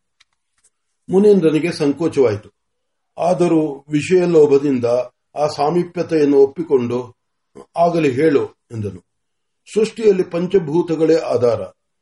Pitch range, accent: 150-190 Hz, native